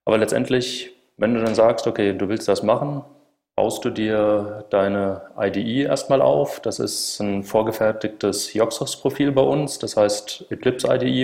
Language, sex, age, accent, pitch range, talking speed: German, male, 30-49, German, 100-125 Hz, 155 wpm